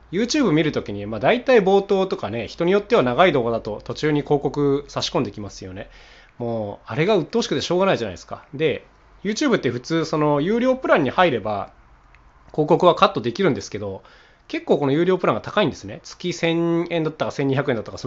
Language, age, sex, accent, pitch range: Japanese, 20-39, male, native, 115-185 Hz